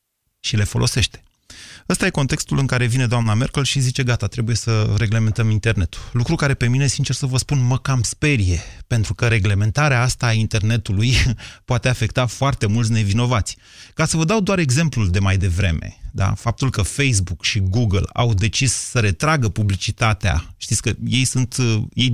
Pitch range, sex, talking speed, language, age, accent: 100-140 Hz, male, 170 wpm, Romanian, 30-49, native